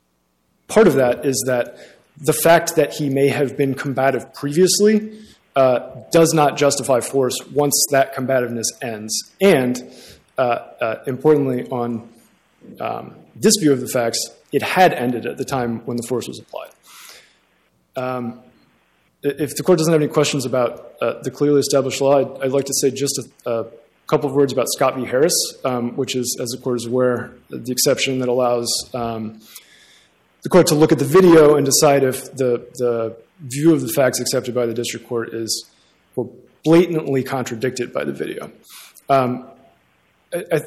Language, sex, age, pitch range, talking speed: English, male, 20-39, 120-145 Hz, 170 wpm